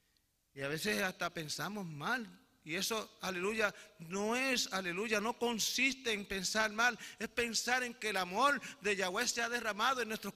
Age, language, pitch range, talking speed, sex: 40-59, English, 160-230 Hz, 175 wpm, male